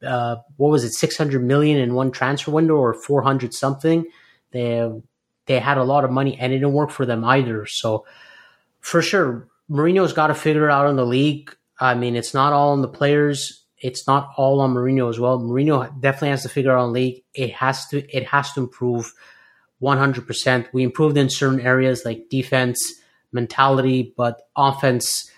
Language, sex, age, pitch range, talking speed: English, male, 30-49, 125-140 Hz, 205 wpm